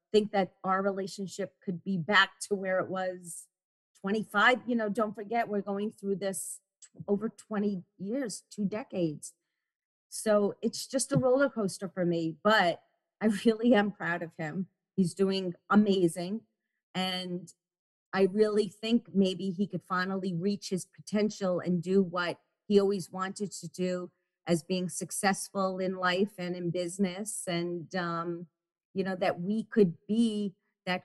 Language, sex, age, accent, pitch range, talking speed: English, female, 40-59, American, 175-200 Hz, 155 wpm